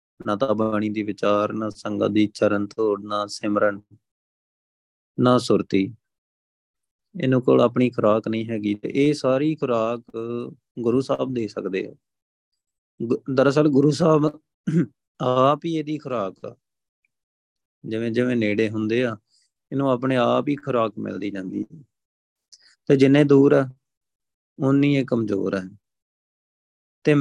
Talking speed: 120 wpm